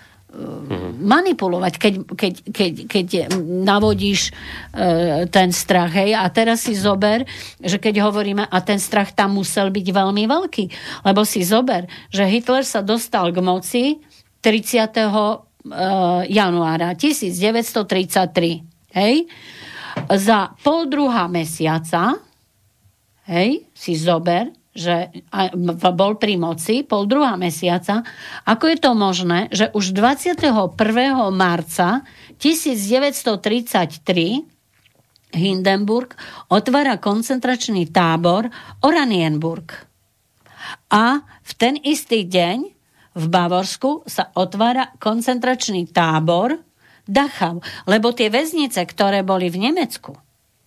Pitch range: 180-230 Hz